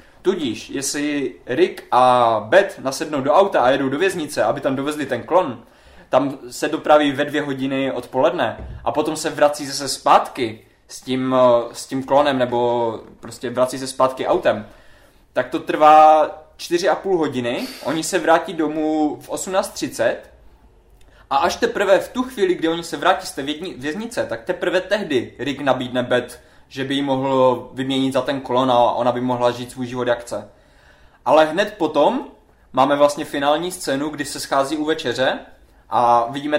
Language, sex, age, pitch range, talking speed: Czech, male, 20-39, 125-155 Hz, 170 wpm